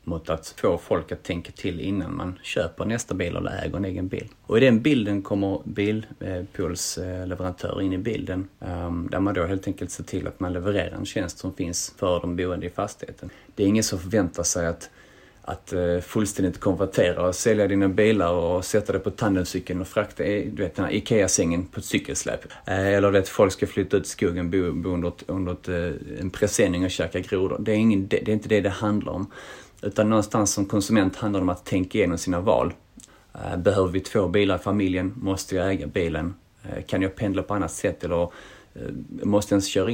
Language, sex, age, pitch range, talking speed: Swedish, male, 30-49, 90-100 Hz, 210 wpm